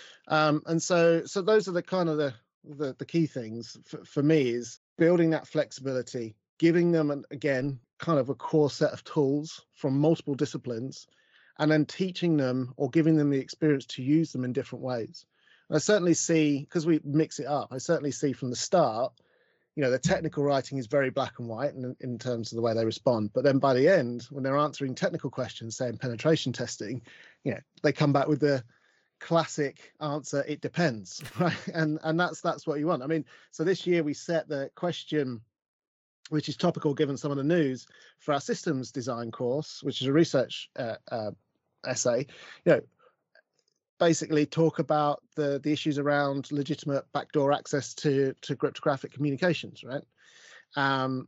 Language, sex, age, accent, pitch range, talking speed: English, male, 30-49, British, 135-160 Hz, 190 wpm